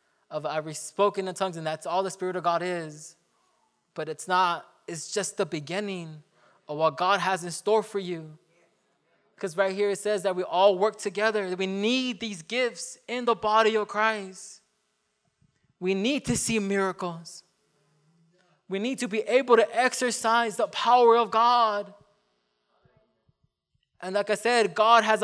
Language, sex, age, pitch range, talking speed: English, male, 20-39, 180-220 Hz, 165 wpm